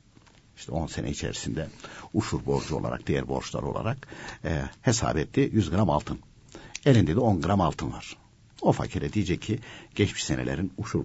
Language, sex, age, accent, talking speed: Turkish, male, 60-79, native, 155 wpm